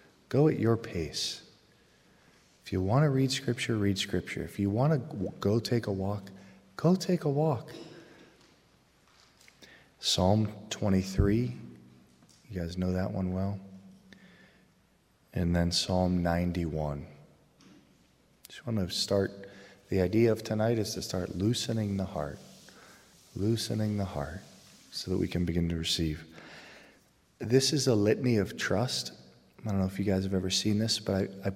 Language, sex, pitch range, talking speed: English, male, 90-105 Hz, 150 wpm